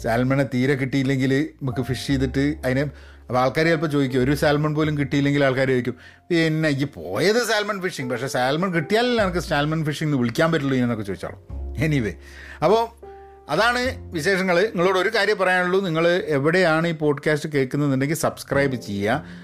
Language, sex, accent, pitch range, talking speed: Malayalam, male, native, 120-155 Hz, 145 wpm